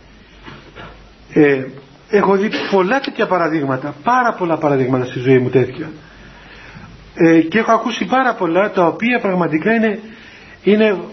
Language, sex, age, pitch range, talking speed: Greek, male, 40-59, 170-230 Hz, 130 wpm